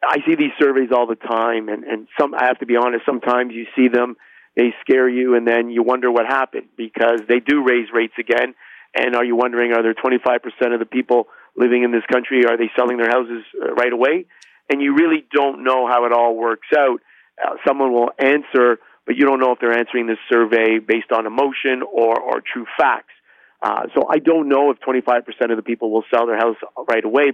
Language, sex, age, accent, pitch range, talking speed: English, male, 50-69, American, 115-140 Hz, 220 wpm